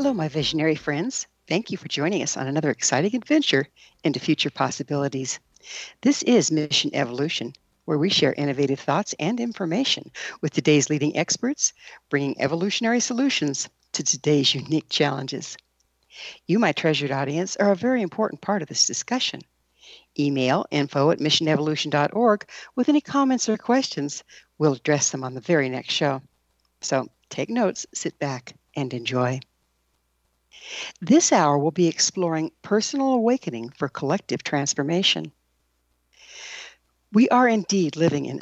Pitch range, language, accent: 140-200 Hz, English, American